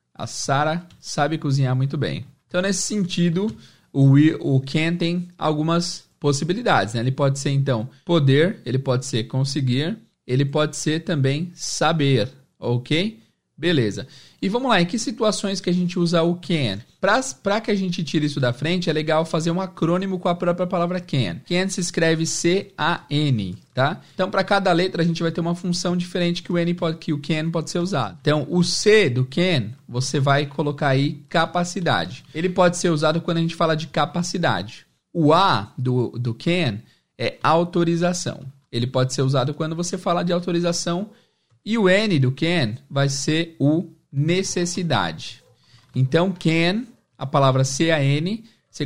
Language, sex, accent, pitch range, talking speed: Portuguese, male, Brazilian, 135-175 Hz, 175 wpm